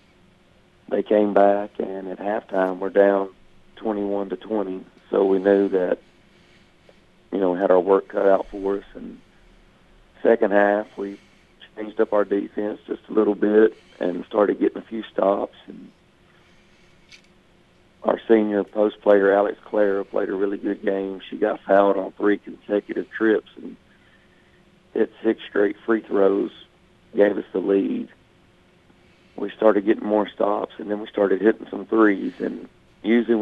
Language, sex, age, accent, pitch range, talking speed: English, male, 40-59, American, 95-105 Hz, 150 wpm